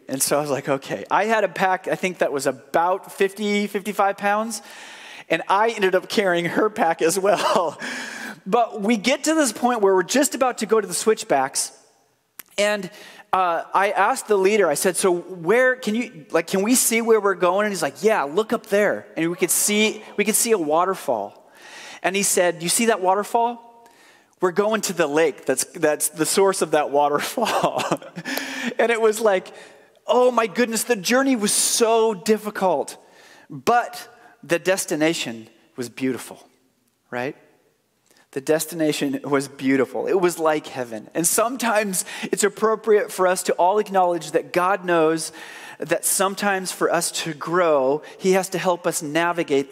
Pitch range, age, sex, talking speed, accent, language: 160-220 Hz, 30-49, male, 175 wpm, American, English